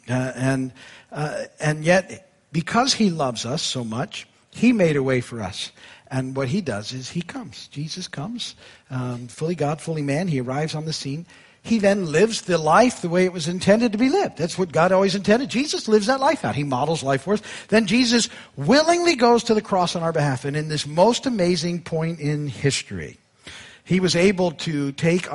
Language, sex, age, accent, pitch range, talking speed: English, male, 50-69, American, 130-185 Hz, 210 wpm